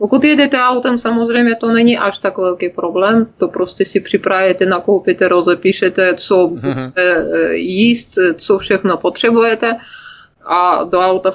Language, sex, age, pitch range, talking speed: Czech, female, 20-39, 180-210 Hz, 130 wpm